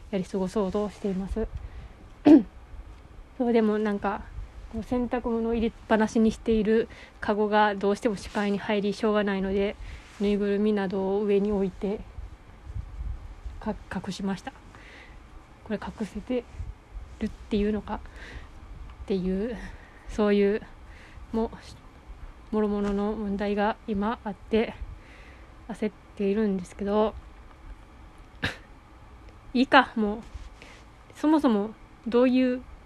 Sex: female